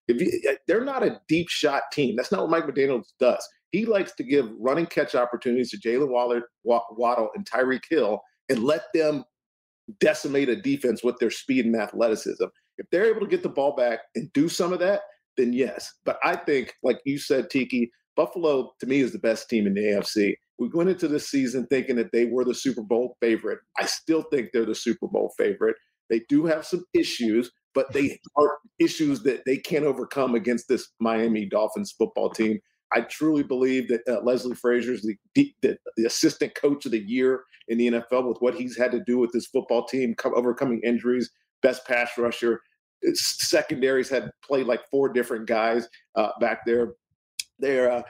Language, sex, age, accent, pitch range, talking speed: English, male, 50-69, American, 115-150 Hz, 190 wpm